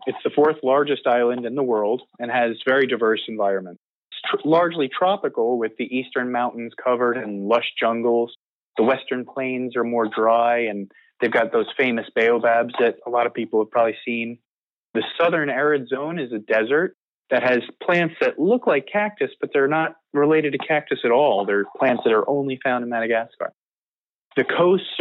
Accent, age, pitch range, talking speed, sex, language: American, 30-49, 120-155 Hz, 180 wpm, male, English